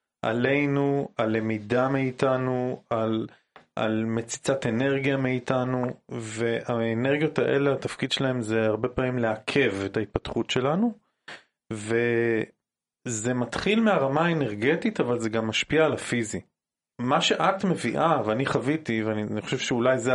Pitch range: 110-140 Hz